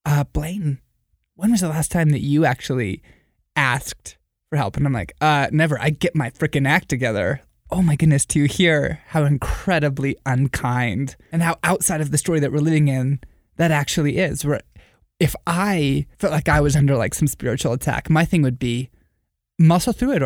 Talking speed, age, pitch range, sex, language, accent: 190 wpm, 20-39, 135-170 Hz, male, English, American